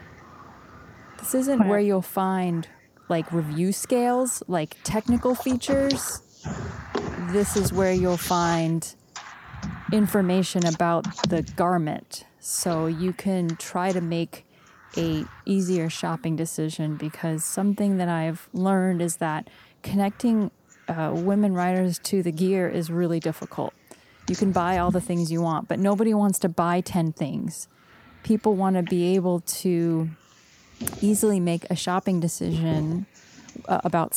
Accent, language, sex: American, English, female